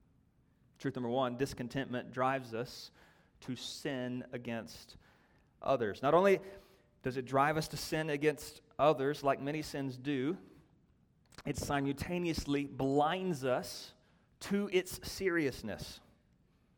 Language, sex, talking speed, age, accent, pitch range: English, male, 110 wpm, 30-49, American, 130-160 Hz